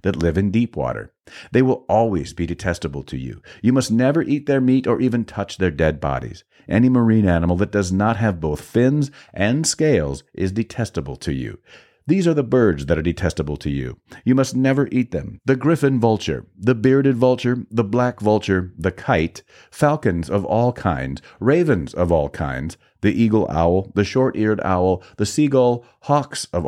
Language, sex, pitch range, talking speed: English, male, 85-125 Hz, 185 wpm